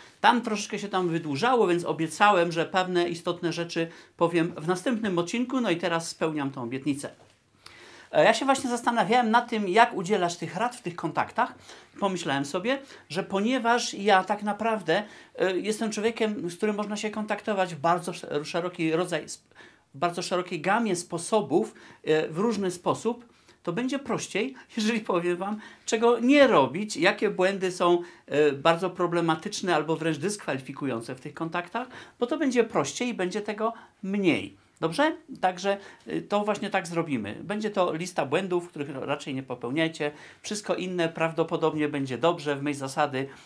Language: Polish